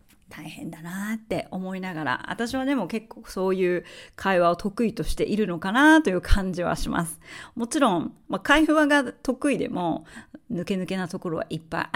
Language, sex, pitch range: Japanese, female, 170-210 Hz